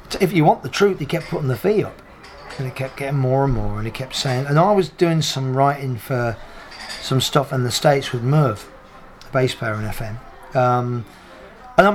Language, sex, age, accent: English, male, 40-59, British